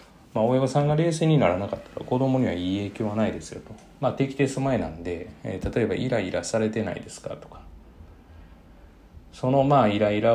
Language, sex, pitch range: Japanese, male, 85-115 Hz